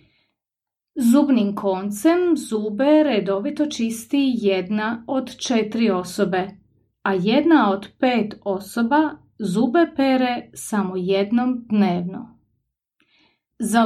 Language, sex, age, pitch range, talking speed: English, female, 30-49, 195-260 Hz, 85 wpm